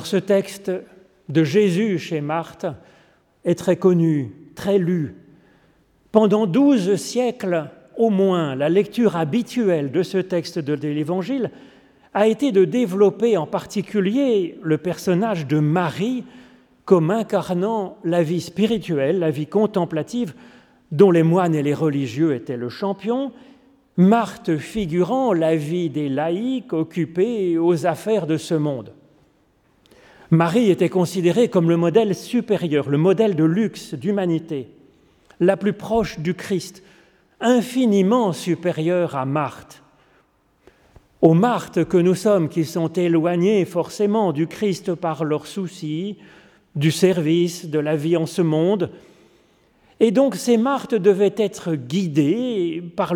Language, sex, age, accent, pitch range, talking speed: French, male, 40-59, French, 165-210 Hz, 130 wpm